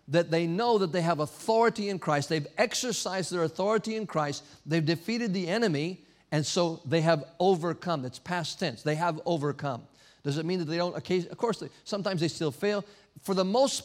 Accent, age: American, 50-69